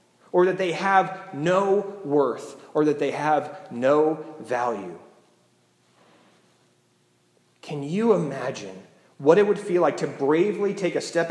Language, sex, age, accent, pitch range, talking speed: English, male, 30-49, American, 145-190 Hz, 135 wpm